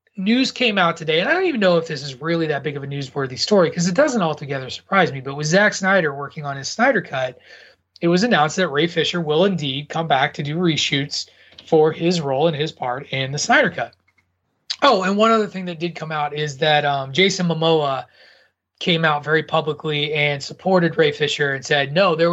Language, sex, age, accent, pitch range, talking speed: English, male, 30-49, American, 145-175 Hz, 225 wpm